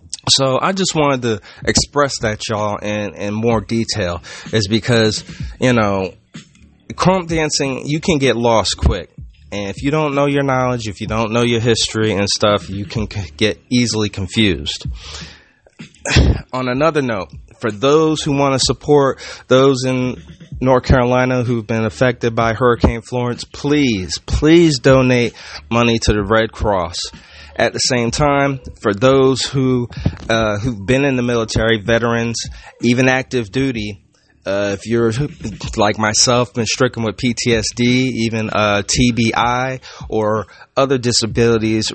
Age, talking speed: 30-49, 145 wpm